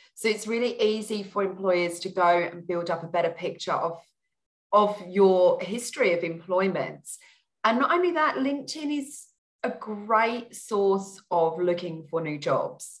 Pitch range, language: 170-215 Hz, English